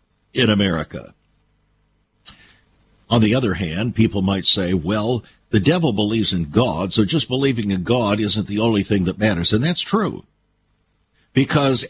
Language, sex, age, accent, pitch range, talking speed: English, male, 60-79, American, 100-135 Hz, 150 wpm